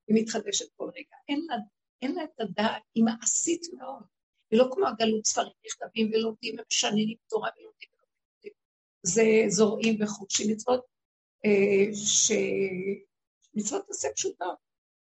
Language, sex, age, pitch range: Hebrew, female, 60-79, 195-250 Hz